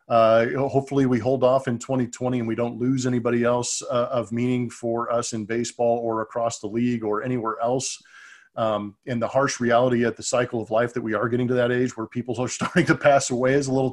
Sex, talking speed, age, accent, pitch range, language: male, 235 wpm, 40-59, American, 115-135 Hz, English